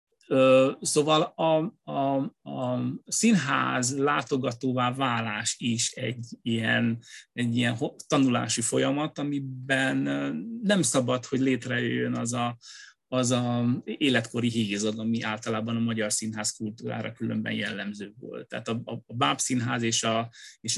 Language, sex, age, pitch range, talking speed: Hungarian, male, 30-49, 115-145 Hz, 125 wpm